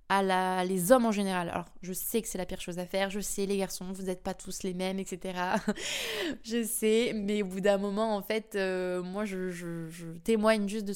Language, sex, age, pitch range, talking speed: French, female, 20-39, 185-215 Hz, 240 wpm